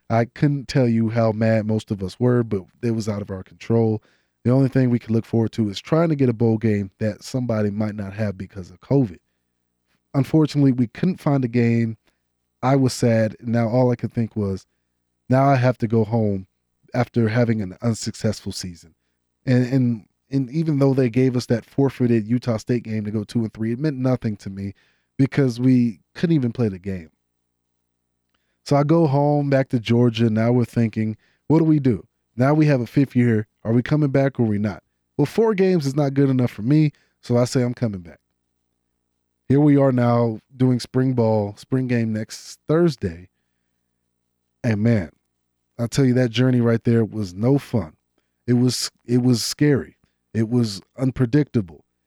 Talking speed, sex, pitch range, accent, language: 195 wpm, male, 100-130 Hz, American, English